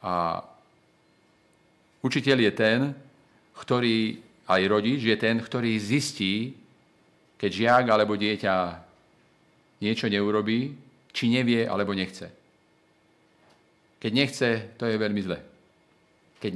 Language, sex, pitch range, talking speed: Slovak, male, 105-130 Hz, 100 wpm